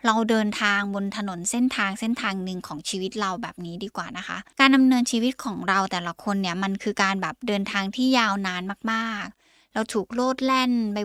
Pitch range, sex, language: 195-240 Hz, female, Thai